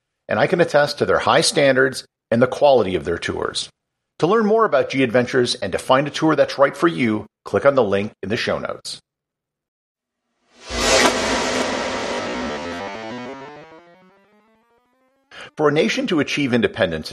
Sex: male